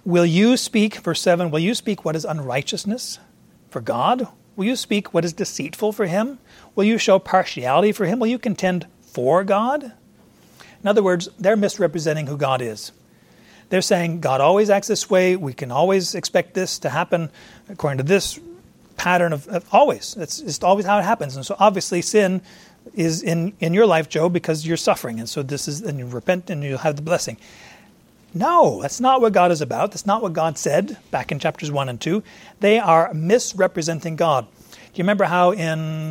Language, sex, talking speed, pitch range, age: English, male, 200 wpm, 155-205 Hz, 40-59